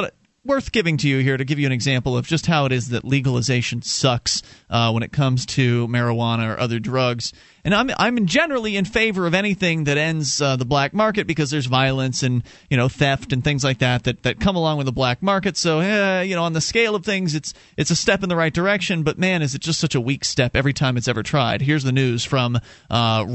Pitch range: 130-165 Hz